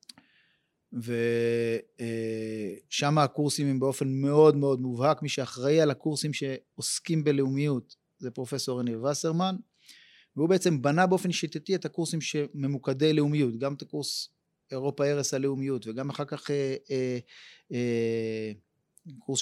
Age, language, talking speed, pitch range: 30-49, Hebrew, 120 wpm, 135-165 Hz